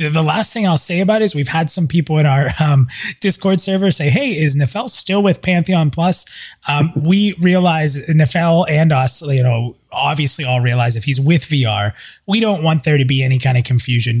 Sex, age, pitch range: male, 20-39, 125-155 Hz